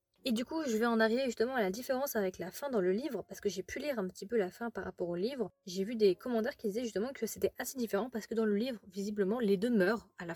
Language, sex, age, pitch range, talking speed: French, female, 20-39, 195-230 Hz, 305 wpm